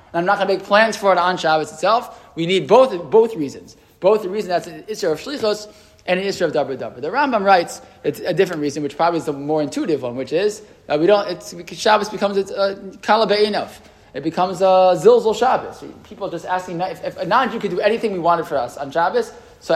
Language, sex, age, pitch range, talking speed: English, male, 20-39, 160-205 Hz, 235 wpm